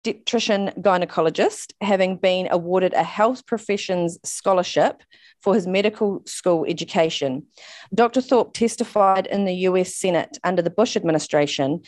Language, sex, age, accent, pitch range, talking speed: English, female, 30-49, Australian, 170-215 Hz, 125 wpm